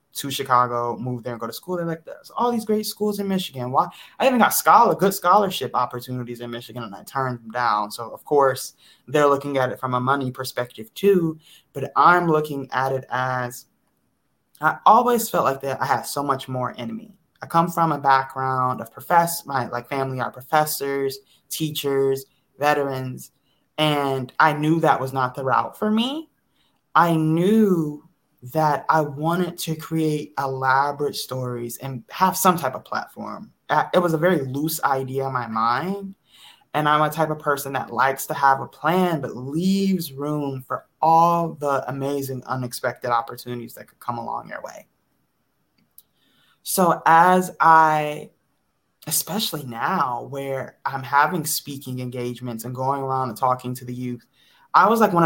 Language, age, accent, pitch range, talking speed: English, 20-39, American, 125-160 Hz, 175 wpm